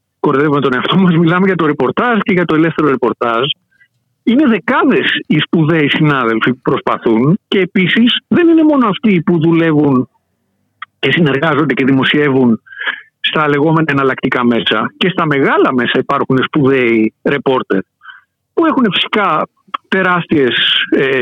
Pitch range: 150-245 Hz